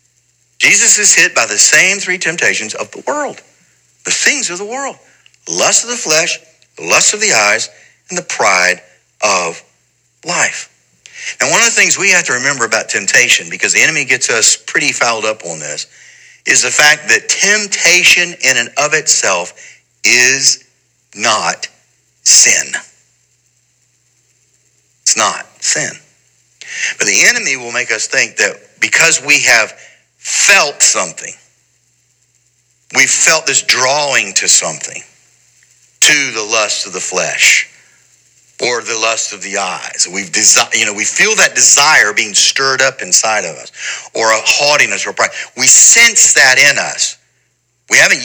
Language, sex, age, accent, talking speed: English, male, 60-79, American, 150 wpm